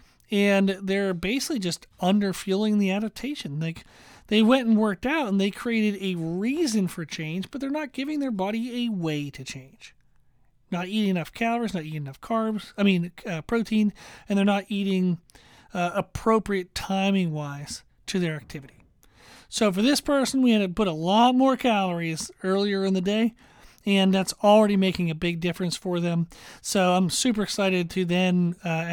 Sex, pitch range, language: male, 170-215 Hz, English